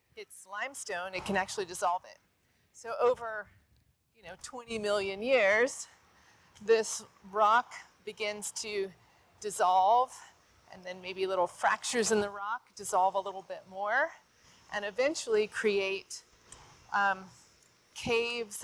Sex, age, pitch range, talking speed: female, 30-49, 185-235 Hz, 120 wpm